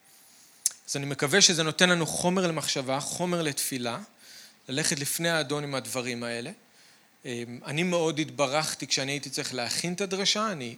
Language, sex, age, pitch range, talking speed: Hebrew, male, 40-59, 135-160 Hz, 145 wpm